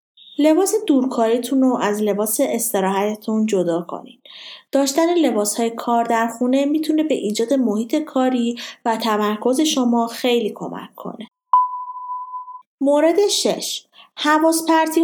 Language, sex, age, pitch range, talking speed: Persian, female, 30-49, 230-315 Hz, 110 wpm